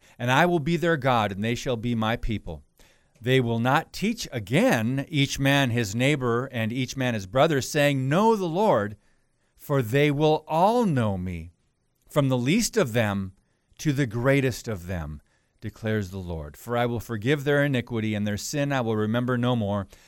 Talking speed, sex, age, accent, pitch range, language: 190 wpm, male, 50-69, American, 120-155 Hz, English